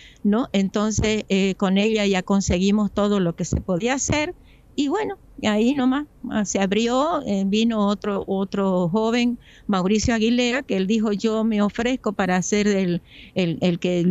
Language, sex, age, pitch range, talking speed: Spanish, female, 50-69, 190-235 Hz, 165 wpm